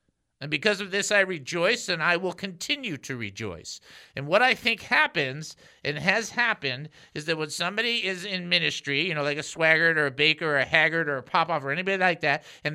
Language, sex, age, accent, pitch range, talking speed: English, male, 50-69, American, 140-185 Hz, 215 wpm